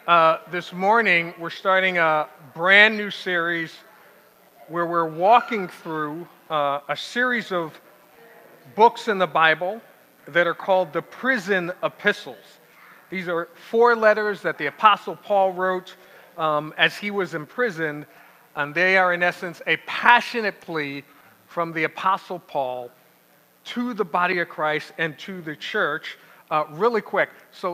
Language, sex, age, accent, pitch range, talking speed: English, male, 50-69, American, 160-205 Hz, 145 wpm